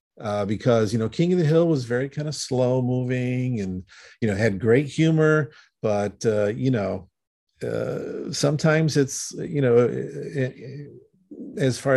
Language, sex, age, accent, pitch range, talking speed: English, male, 50-69, American, 105-130 Hz, 165 wpm